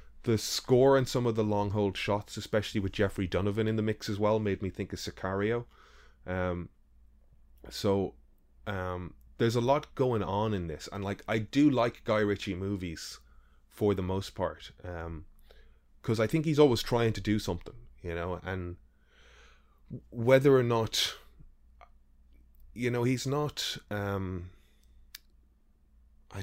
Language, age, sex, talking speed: English, 20-39, male, 150 wpm